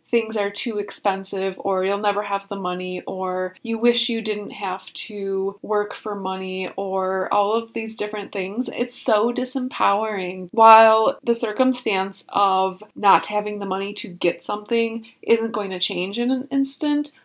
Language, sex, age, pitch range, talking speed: English, female, 20-39, 195-240 Hz, 165 wpm